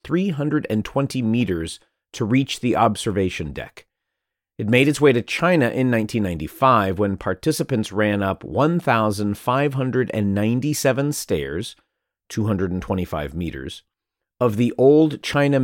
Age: 40-59